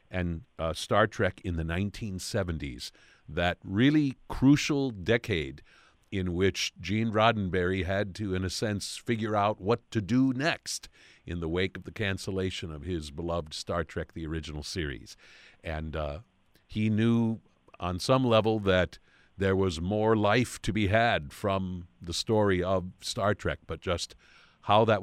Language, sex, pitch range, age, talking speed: English, male, 85-105 Hz, 50-69, 155 wpm